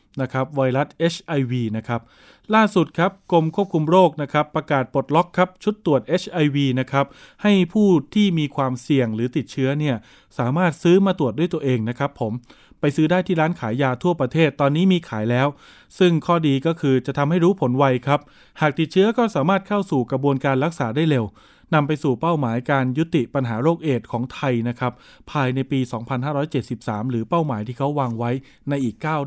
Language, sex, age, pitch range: Thai, male, 20-39, 130-170 Hz